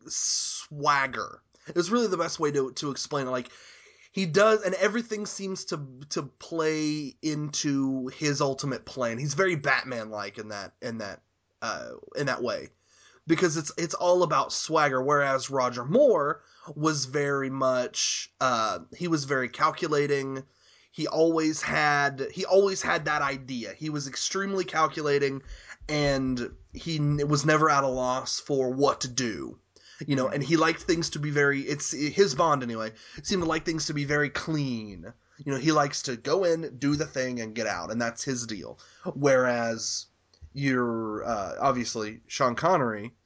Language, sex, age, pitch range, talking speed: English, male, 20-39, 125-160 Hz, 165 wpm